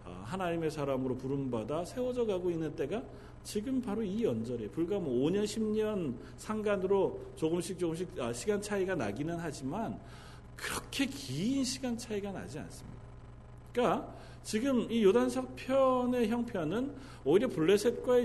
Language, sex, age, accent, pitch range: Korean, male, 40-59, native, 135-215 Hz